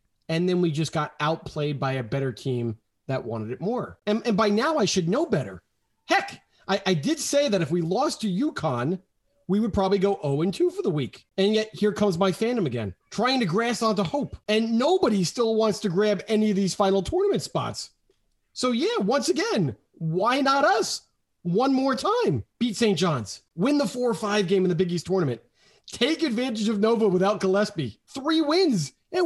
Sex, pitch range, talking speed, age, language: male, 155-220 Hz, 195 wpm, 30-49, English